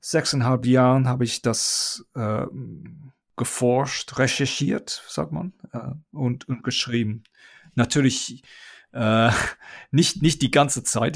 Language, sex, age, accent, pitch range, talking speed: German, male, 40-59, German, 120-155 Hz, 115 wpm